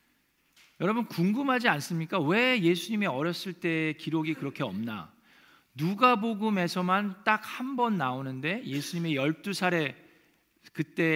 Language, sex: Korean, male